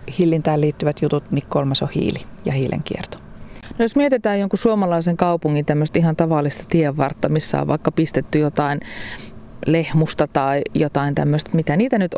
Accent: native